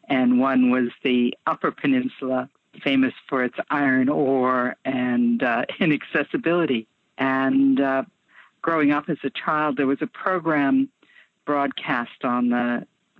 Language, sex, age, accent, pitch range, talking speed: English, female, 50-69, American, 130-175 Hz, 125 wpm